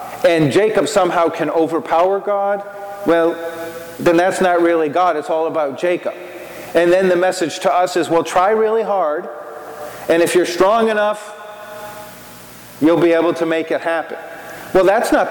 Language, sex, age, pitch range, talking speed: English, male, 40-59, 165-200 Hz, 165 wpm